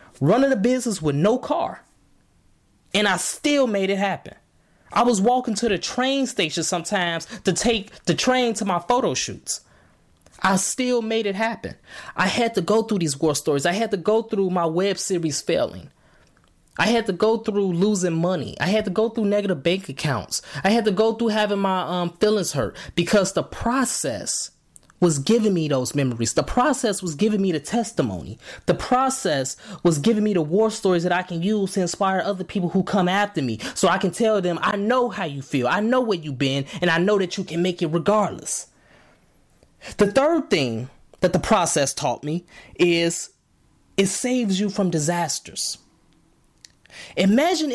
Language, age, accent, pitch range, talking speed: English, 20-39, American, 170-220 Hz, 185 wpm